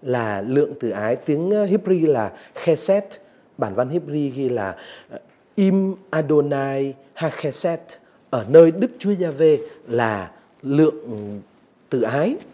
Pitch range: 135-190 Hz